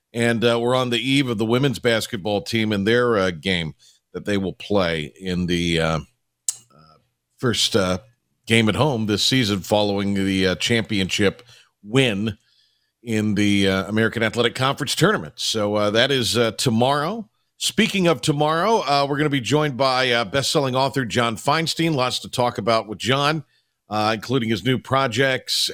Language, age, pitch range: English, 50-69, 105-130 Hz